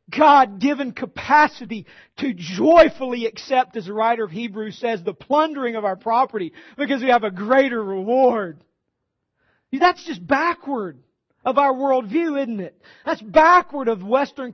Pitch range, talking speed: 190-280 Hz, 140 wpm